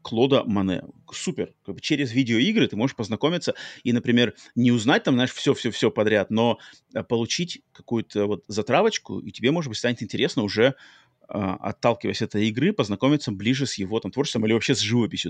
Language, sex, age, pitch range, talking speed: Russian, male, 30-49, 105-135 Hz, 175 wpm